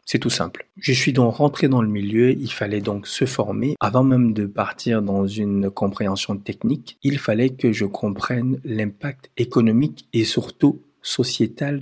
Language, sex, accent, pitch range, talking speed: French, male, French, 105-130 Hz, 170 wpm